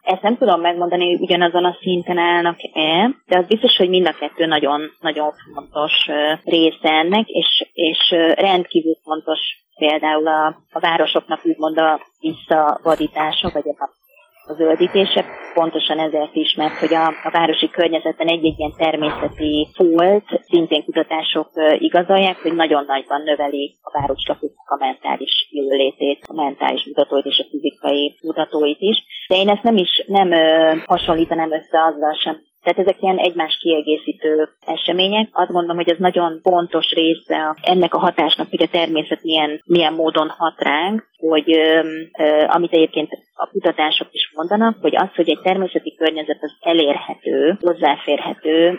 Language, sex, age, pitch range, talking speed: Hungarian, female, 30-49, 155-175 Hz, 145 wpm